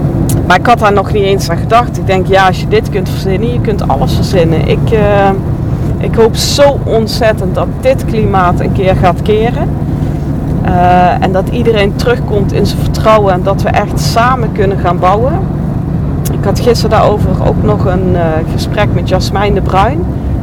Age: 40-59